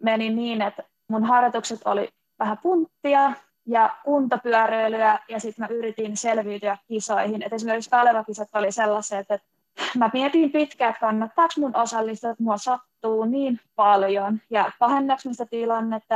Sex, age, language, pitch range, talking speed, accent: female, 20-39, Finnish, 210-240 Hz, 135 wpm, native